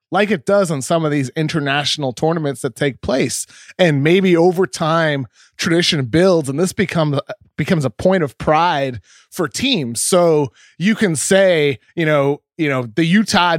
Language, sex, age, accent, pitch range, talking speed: English, male, 20-39, American, 145-190 Hz, 170 wpm